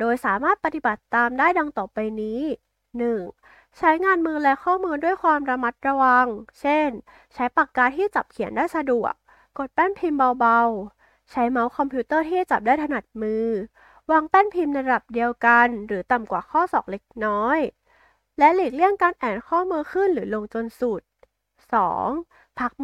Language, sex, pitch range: Thai, female, 235-320 Hz